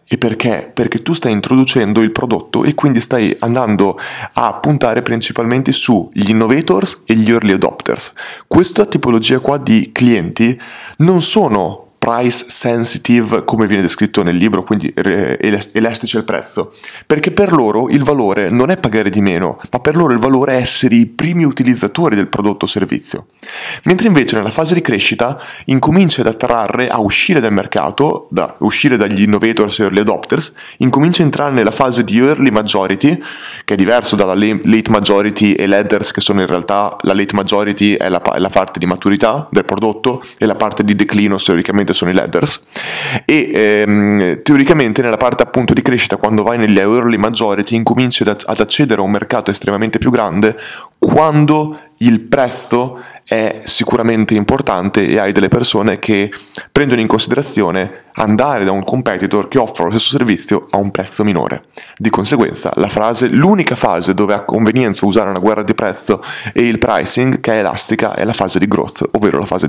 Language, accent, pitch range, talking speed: Italian, native, 105-130 Hz, 175 wpm